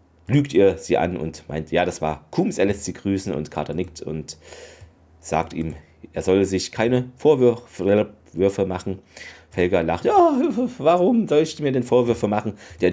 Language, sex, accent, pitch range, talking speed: German, male, German, 85-120 Hz, 170 wpm